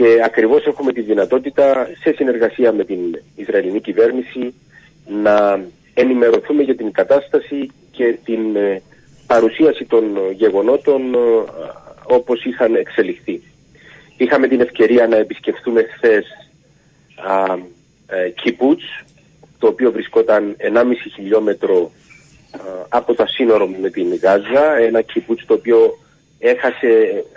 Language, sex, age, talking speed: Greek, male, 40-59, 105 wpm